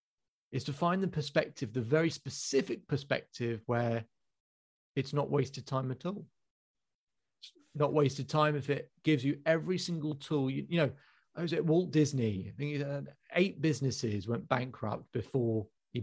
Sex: male